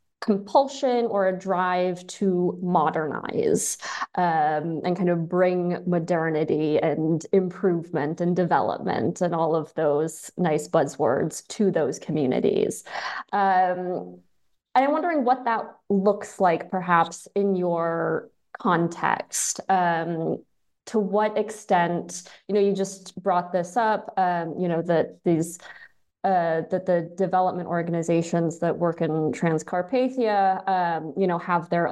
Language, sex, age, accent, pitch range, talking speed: English, female, 20-39, American, 160-200 Hz, 125 wpm